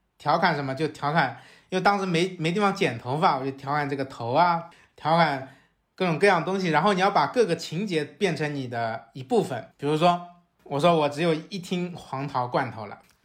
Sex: male